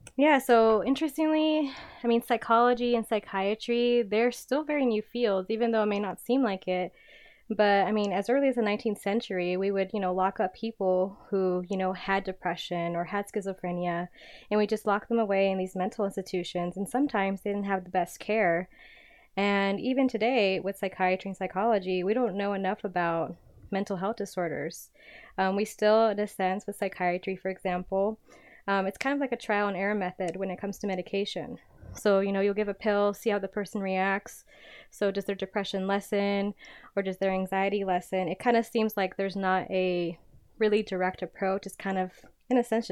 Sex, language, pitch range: female, English, 190-225 Hz